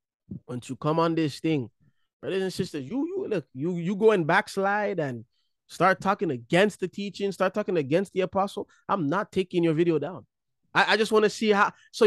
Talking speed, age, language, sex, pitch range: 210 wpm, 20-39, English, male, 140-185 Hz